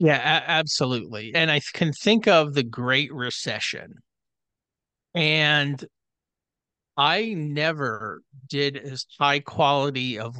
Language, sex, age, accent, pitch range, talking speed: English, male, 40-59, American, 125-150 Hz, 105 wpm